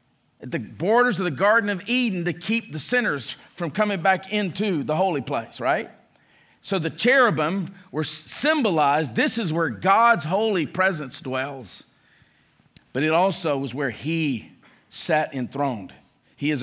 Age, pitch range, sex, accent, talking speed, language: 50-69, 160-215 Hz, male, American, 150 wpm, English